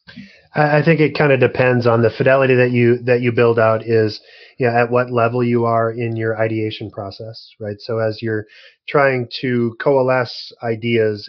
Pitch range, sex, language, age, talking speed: 110-125 Hz, male, English, 20-39, 190 wpm